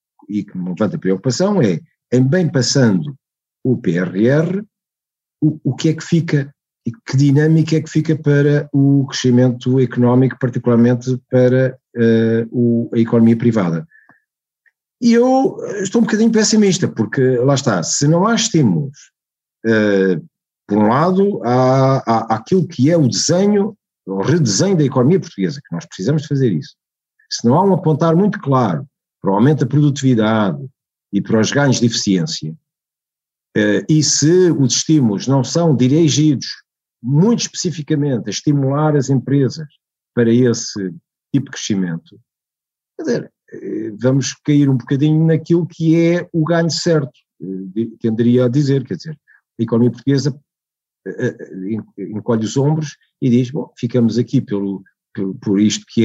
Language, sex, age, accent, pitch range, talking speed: Portuguese, male, 50-69, Portuguese, 115-155 Hz, 140 wpm